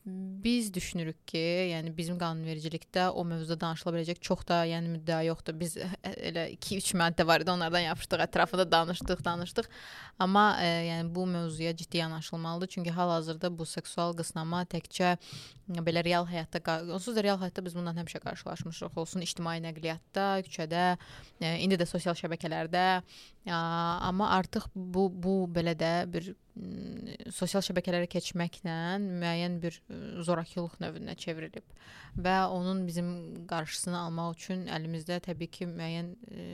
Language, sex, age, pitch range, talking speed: English, female, 20-39, 165-185 Hz, 135 wpm